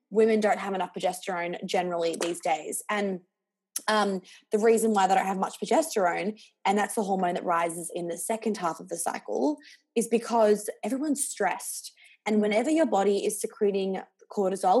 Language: English